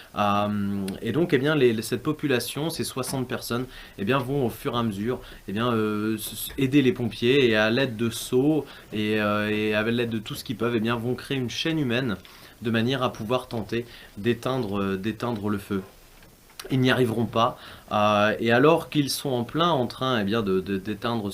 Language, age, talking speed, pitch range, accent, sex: French, 20-39, 200 wpm, 105-130 Hz, French, male